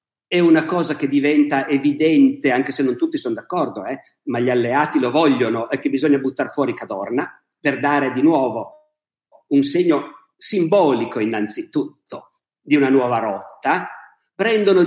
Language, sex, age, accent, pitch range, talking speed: Italian, male, 50-69, native, 140-220 Hz, 150 wpm